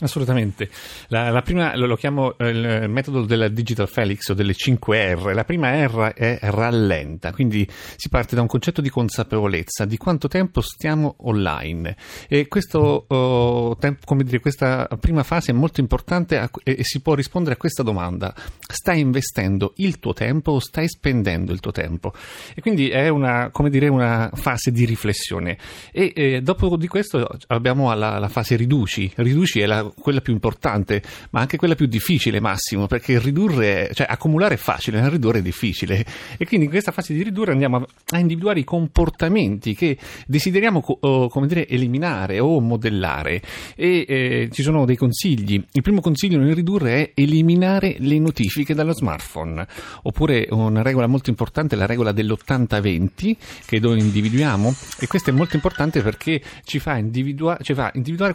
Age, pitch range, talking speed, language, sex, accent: 40-59, 110-155 Hz, 175 wpm, Italian, male, native